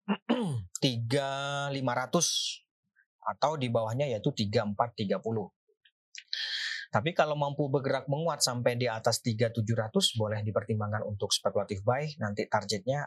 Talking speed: 115 wpm